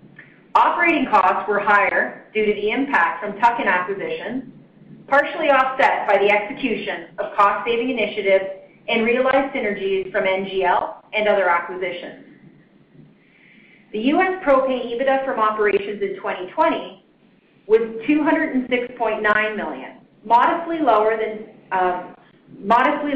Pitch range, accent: 200-255 Hz, American